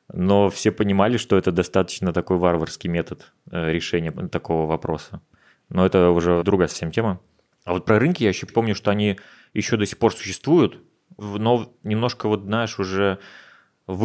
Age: 20-39